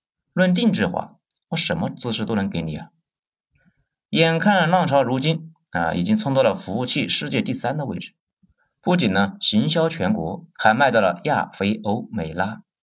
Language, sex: Chinese, male